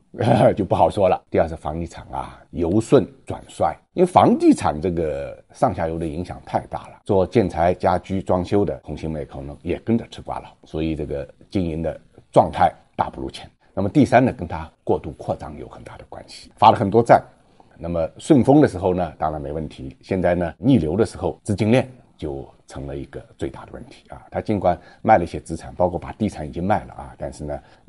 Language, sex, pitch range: Chinese, male, 80-110 Hz